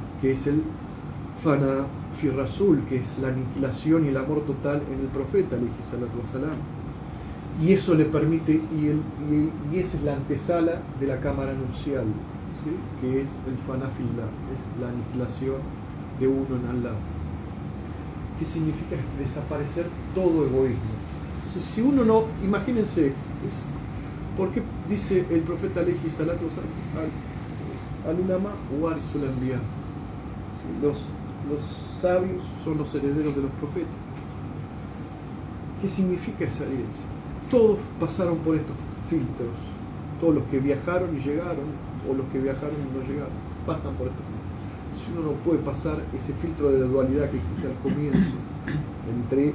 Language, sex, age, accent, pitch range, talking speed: Spanish, male, 40-59, Argentinian, 130-155 Hz, 140 wpm